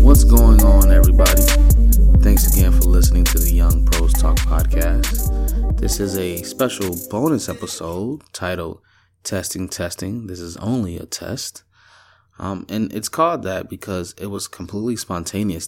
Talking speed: 150 wpm